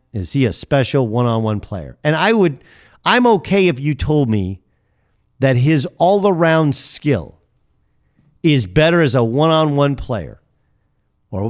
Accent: American